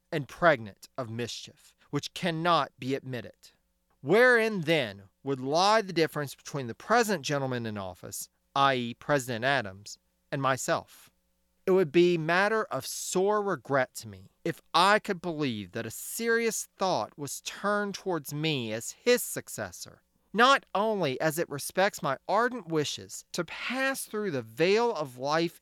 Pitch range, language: 115-190 Hz, English